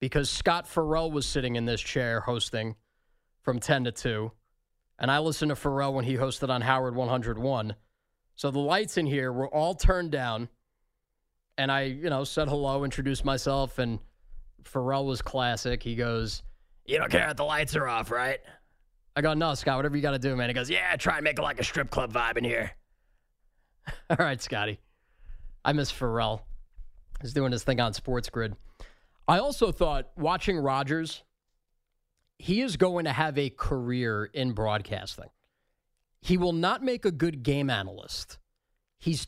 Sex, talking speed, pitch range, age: male, 175 wpm, 120-165 Hz, 20-39